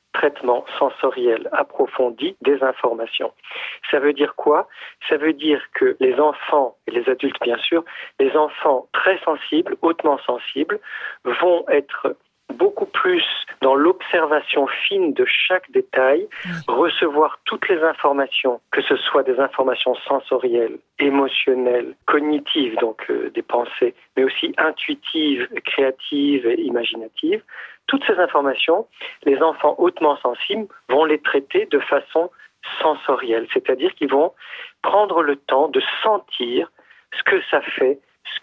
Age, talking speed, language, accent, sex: 50-69, 130 wpm, French, French, male